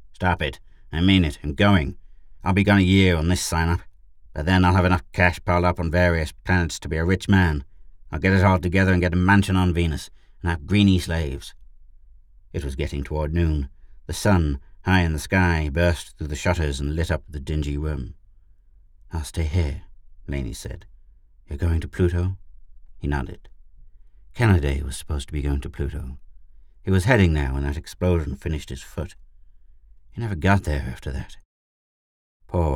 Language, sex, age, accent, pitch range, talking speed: English, male, 60-79, British, 75-90 Hz, 190 wpm